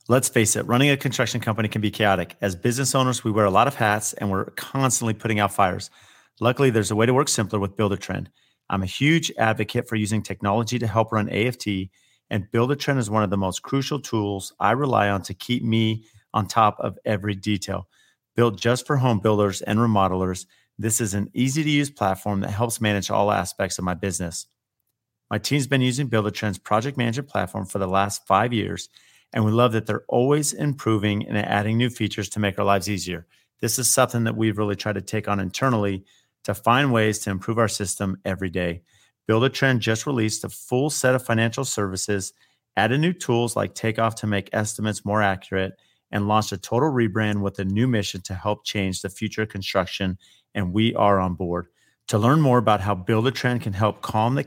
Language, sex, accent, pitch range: English, male, American, 100-120 Hz